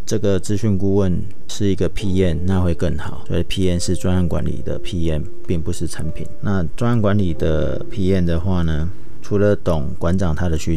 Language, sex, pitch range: Chinese, male, 85-100 Hz